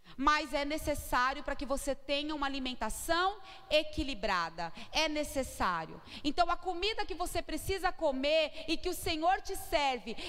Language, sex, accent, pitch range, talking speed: Portuguese, female, Brazilian, 295-385 Hz, 145 wpm